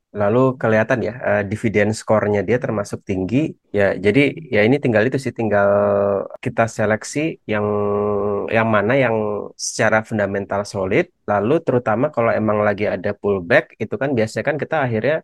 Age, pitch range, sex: 30-49, 100-120 Hz, male